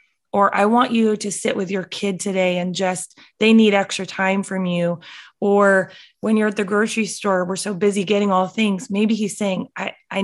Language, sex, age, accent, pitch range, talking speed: English, female, 20-39, American, 190-235 Hz, 210 wpm